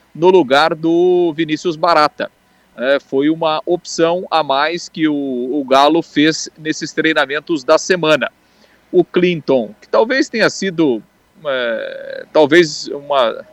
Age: 40-59